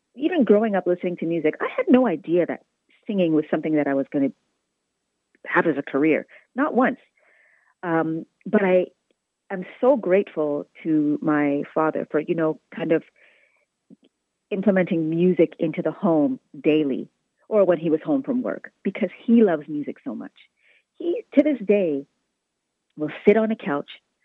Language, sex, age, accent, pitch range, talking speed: English, female, 40-59, American, 155-220 Hz, 165 wpm